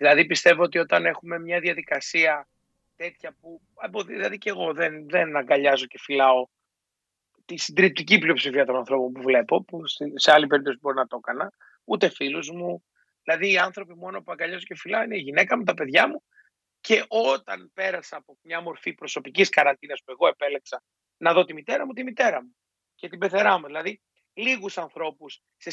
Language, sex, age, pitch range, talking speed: Greek, male, 30-49, 145-190 Hz, 180 wpm